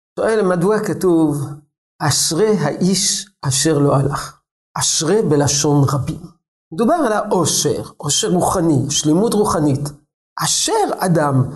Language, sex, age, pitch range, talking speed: Hebrew, male, 50-69, 140-190 Hz, 105 wpm